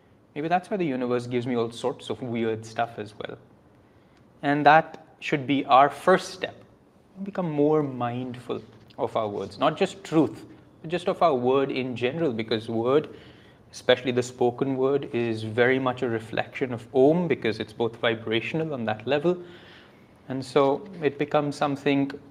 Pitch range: 115-145 Hz